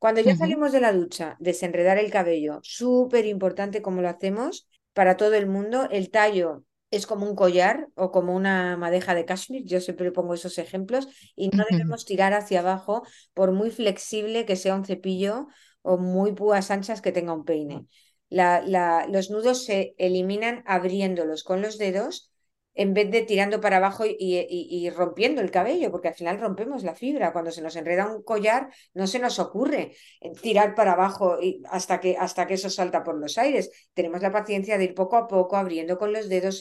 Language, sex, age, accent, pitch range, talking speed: Spanish, female, 50-69, Spanish, 180-215 Hz, 190 wpm